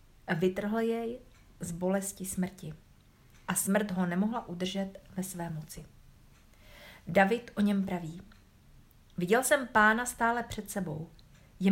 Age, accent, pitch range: 50-69, native, 165-205 Hz